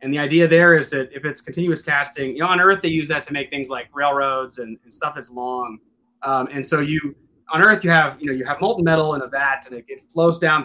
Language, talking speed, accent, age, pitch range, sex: English, 275 wpm, American, 30-49, 135-170 Hz, male